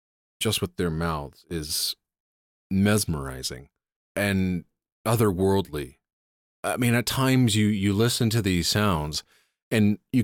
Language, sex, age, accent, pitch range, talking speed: English, male, 40-59, American, 90-115 Hz, 115 wpm